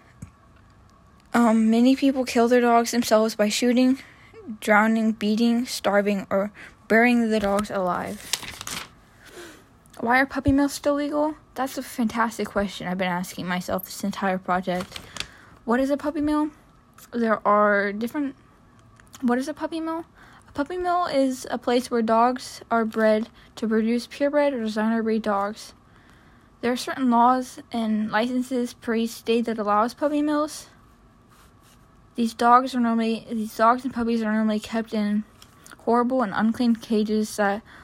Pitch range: 205-245 Hz